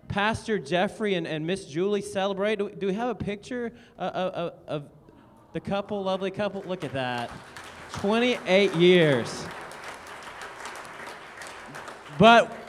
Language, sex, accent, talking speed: English, male, American, 130 wpm